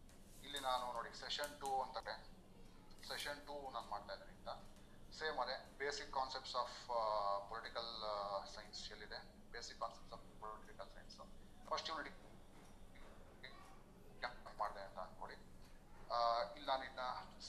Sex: male